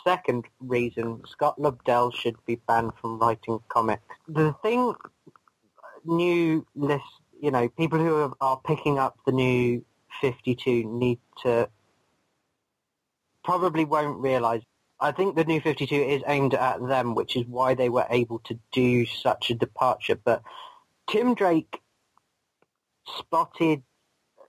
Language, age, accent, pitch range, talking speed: English, 30-49, British, 120-145 Hz, 130 wpm